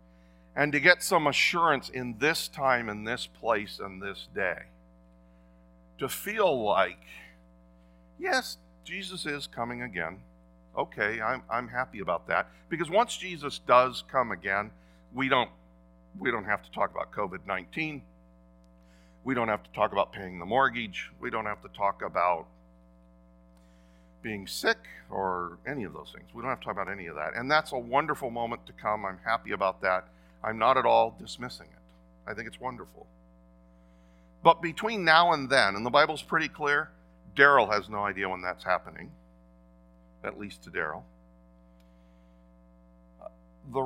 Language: English